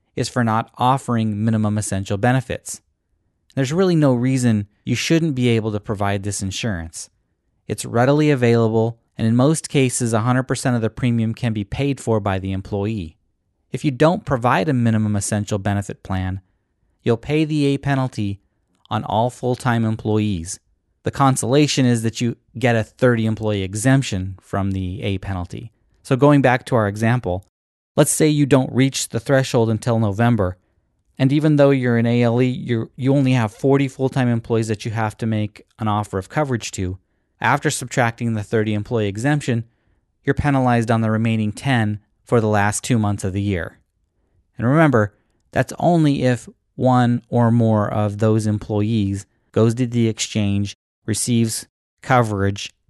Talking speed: 160 wpm